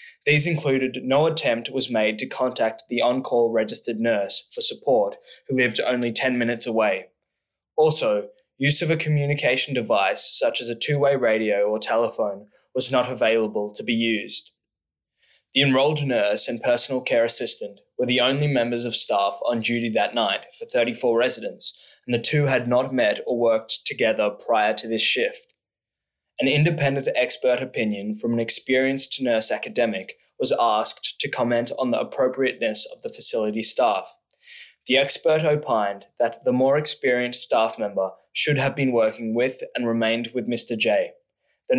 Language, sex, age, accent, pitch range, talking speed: English, male, 20-39, Australian, 115-140 Hz, 160 wpm